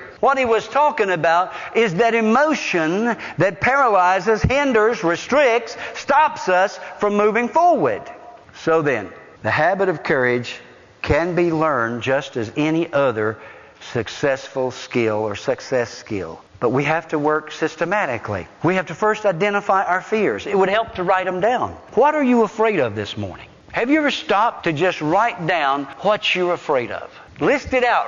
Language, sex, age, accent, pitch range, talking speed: English, male, 60-79, American, 155-235 Hz, 165 wpm